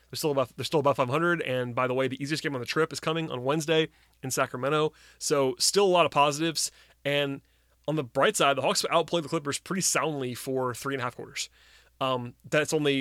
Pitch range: 125-150 Hz